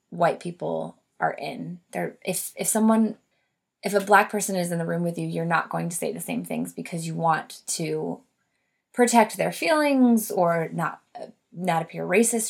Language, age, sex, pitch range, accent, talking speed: English, 20-39, female, 170-210 Hz, American, 180 wpm